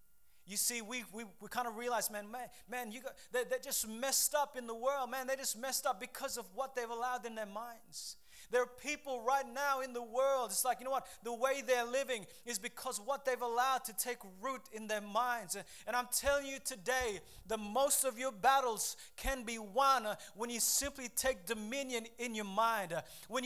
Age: 20-39